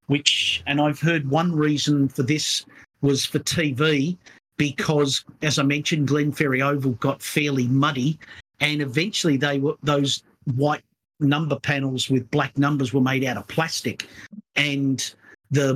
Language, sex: English, male